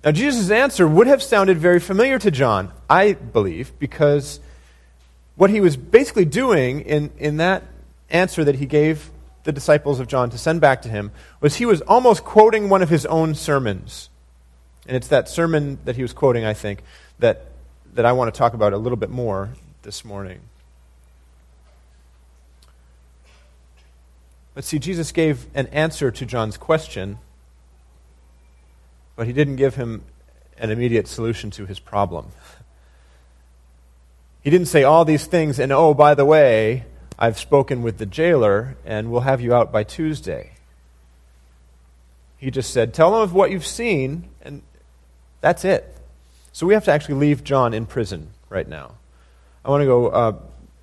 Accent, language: American, English